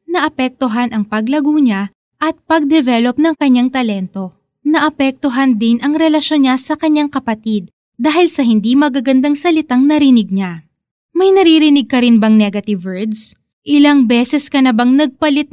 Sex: female